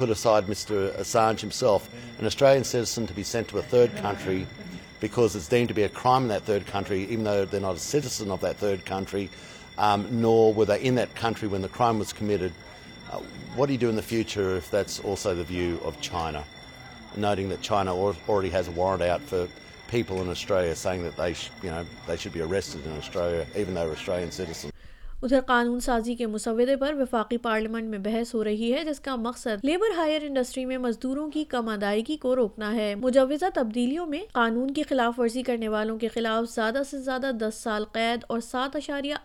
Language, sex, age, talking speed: Urdu, male, 50-69, 215 wpm